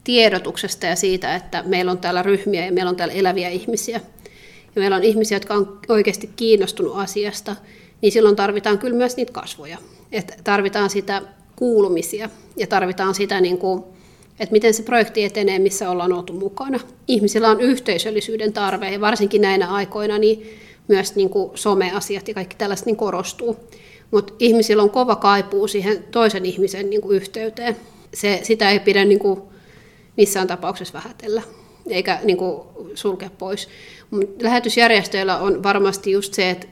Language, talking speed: Finnish, 140 wpm